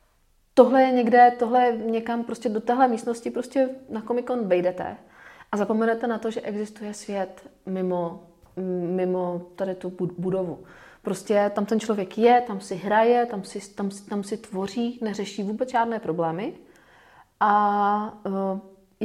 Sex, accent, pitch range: female, native, 195-230 Hz